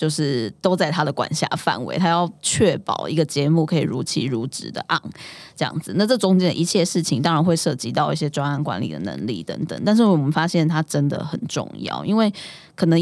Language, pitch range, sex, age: Chinese, 155-185 Hz, female, 10-29